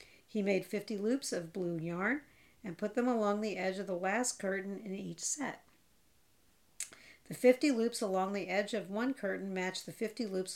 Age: 50-69